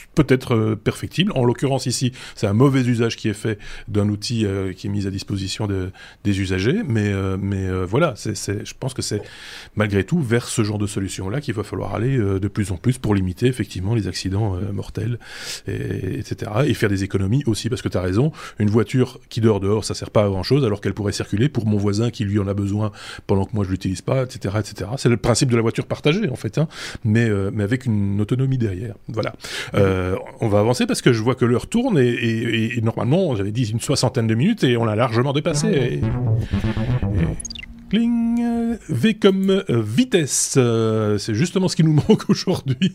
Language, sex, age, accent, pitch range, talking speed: French, male, 20-39, French, 105-140 Hz, 225 wpm